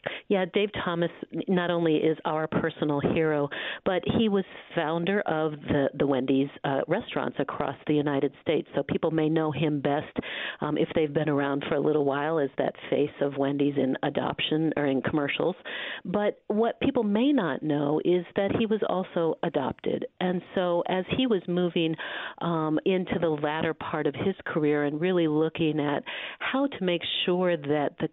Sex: female